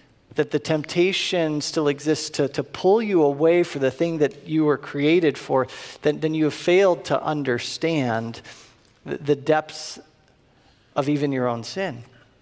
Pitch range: 160-230 Hz